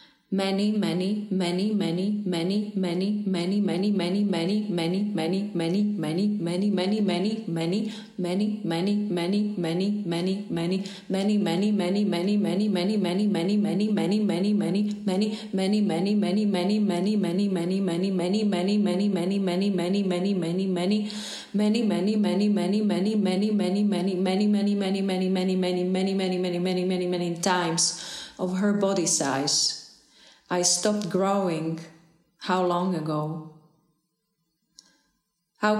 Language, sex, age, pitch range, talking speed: Slovak, female, 30-49, 175-205 Hz, 145 wpm